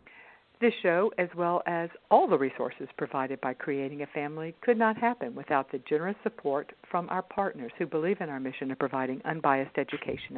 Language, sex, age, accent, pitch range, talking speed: English, female, 60-79, American, 145-190 Hz, 185 wpm